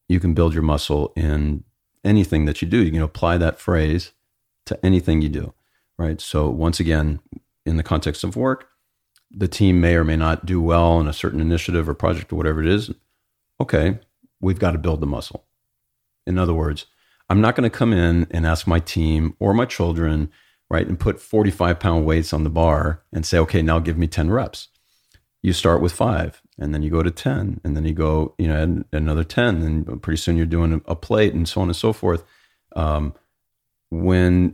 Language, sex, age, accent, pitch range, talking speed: English, male, 40-59, American, 80-95 Hz, 205 wpm